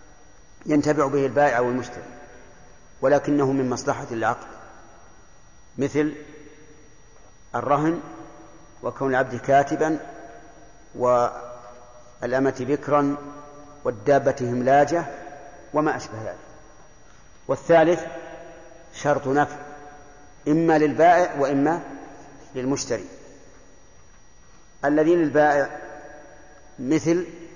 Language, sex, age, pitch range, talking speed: Arabic, male, 50-69, 130-150 Hz, 65 wpm